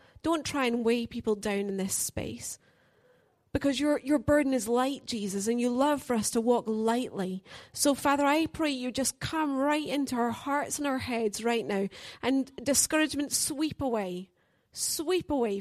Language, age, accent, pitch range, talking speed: English, 30-49, British, 220-280 Hz, 175 wpm